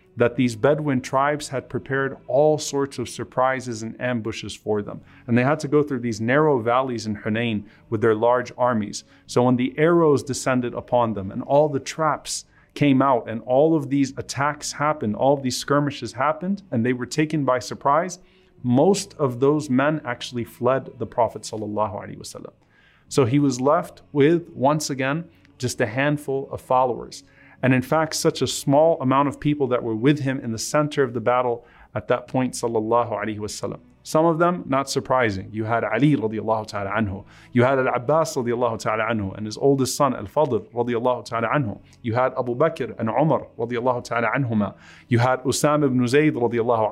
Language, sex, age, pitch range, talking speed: English, male, 30-49, 115-145 Hz, 185 wpm